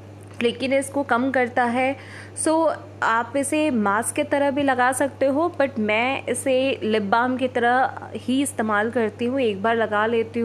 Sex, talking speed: female, 180 wpm